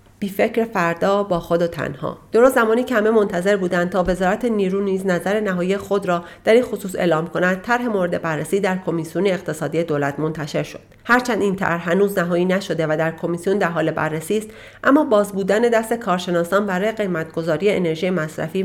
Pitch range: 170-210 Hz